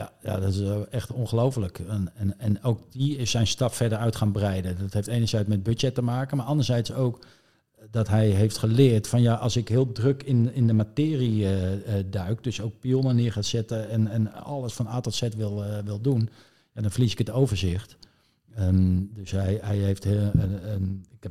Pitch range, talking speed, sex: 100-120 Hz, 220 wpm, male